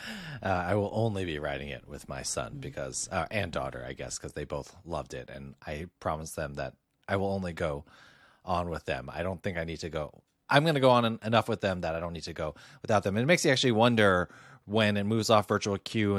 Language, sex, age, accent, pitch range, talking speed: English, male, 30-49, American, 80-105 Hz, 255 wpm